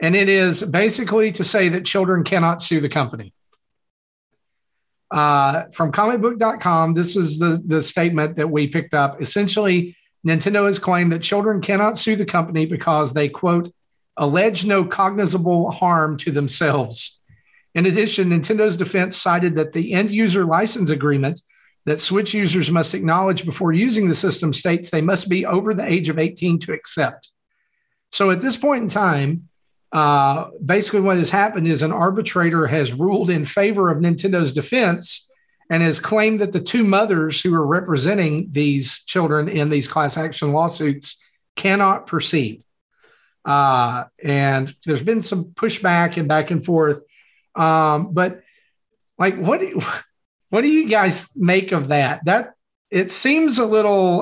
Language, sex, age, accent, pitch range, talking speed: English, male, 50-69, American, 155-195 Hz, 155 wpm